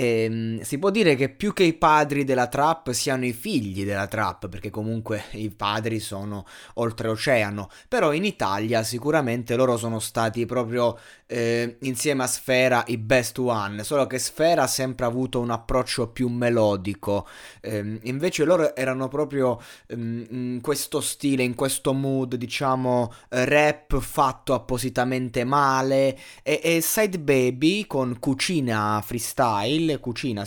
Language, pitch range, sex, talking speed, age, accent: Italian, 115-150 Hz, male, 140 wpm, 20-39, native